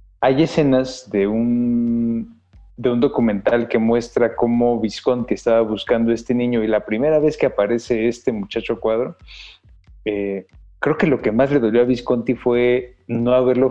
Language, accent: Spanish, Mexican